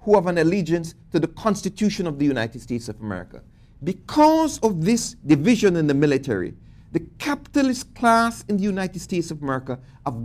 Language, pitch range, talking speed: English, 135-210 Hz, 175 wpm